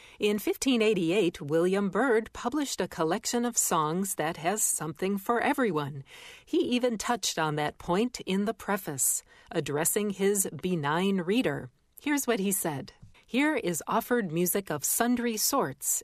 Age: 40-59